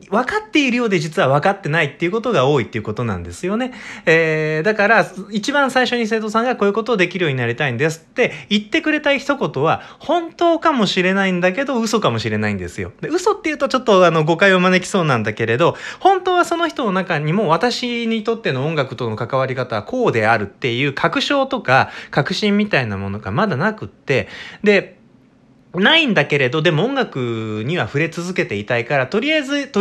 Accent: native